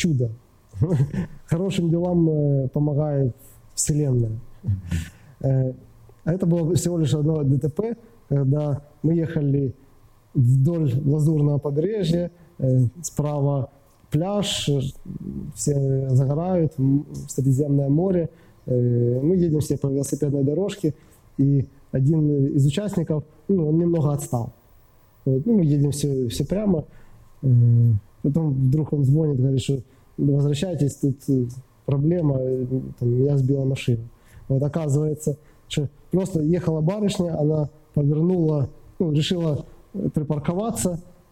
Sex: male